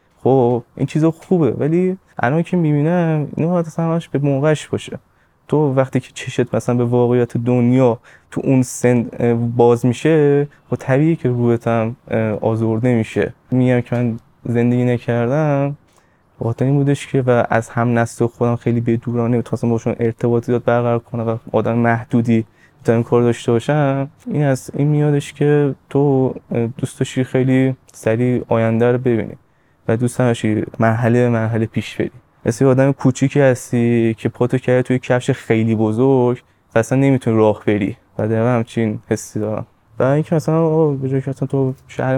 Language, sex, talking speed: Persian, male, 160 wpm